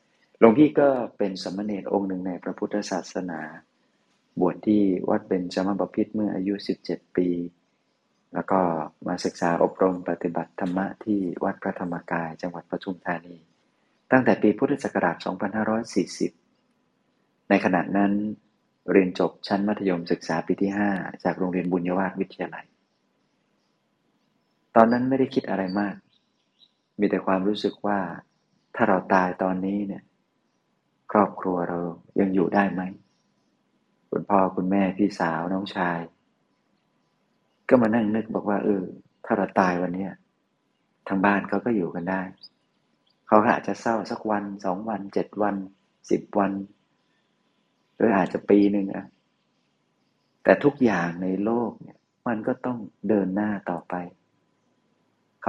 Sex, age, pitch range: male, 30-49, 90-105 Hz